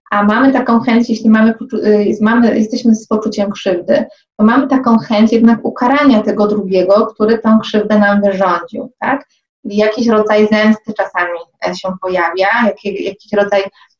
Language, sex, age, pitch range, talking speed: Polish, female, 20-39, 200-235 Hz, 140 wpm